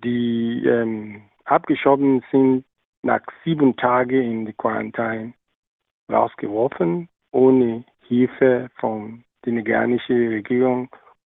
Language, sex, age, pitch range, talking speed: German, male, 50-69, 120-135 Hz, 90 wpm